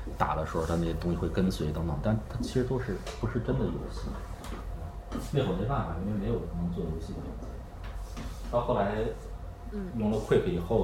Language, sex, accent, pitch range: Chinese, male, native, 80-95 Hz